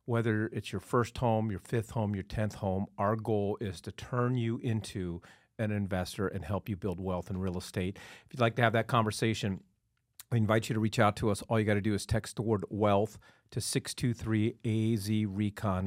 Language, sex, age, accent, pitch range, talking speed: English, male, 40-59, American, 105-120 Hz, 210 wpm